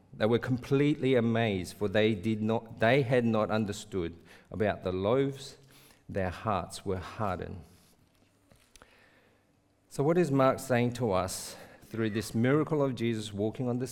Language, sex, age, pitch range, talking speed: English, male, 50-69, 95-130 Hz, 145 wpm